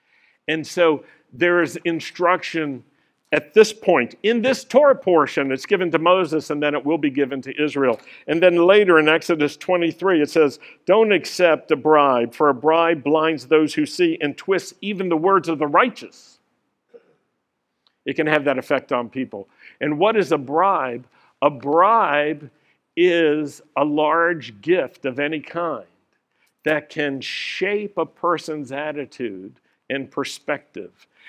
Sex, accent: male, American